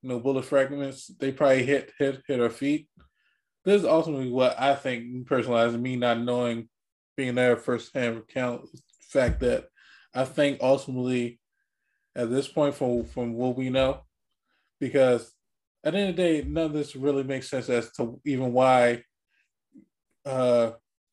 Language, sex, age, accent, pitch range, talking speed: English, male, 20-39, American, 115-135 Hz, 155 wpm